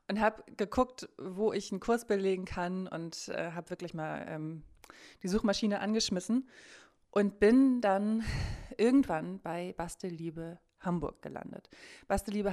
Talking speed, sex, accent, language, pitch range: 130 wpm, female, German, German, 165-205 Hz